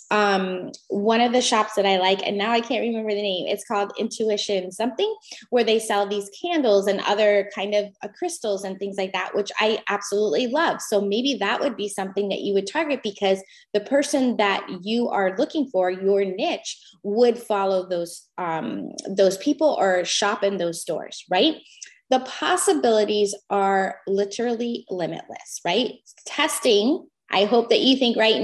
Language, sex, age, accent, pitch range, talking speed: English, female, 20-39, American, 200-270 Hz, 175 wpm